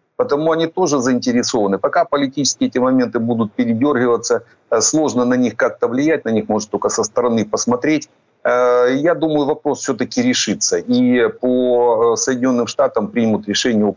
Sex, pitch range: male, 115-150 Hz